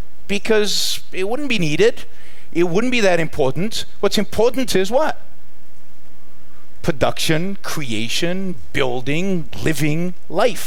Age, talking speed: 50-69, 105 wpm